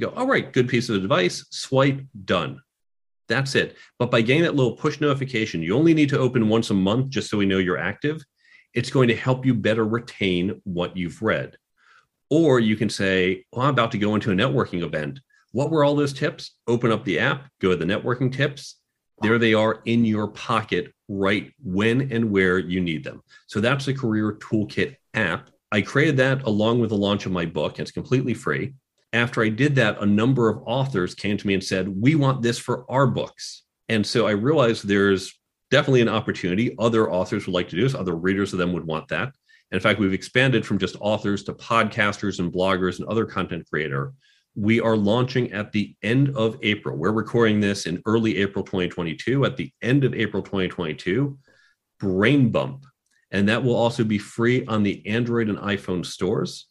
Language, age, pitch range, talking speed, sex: English, 40-59, 100-125 Hz, 205 wpm, male